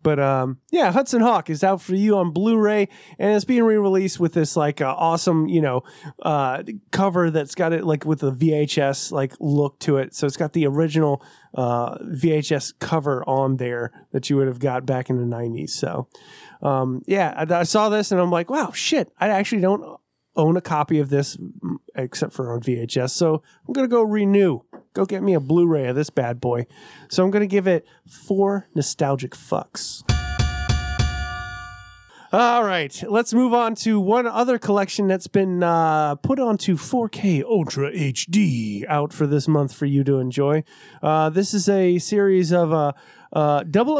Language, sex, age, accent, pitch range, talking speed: English, male, 30-49, American, 140-190 Hz, 185 wpm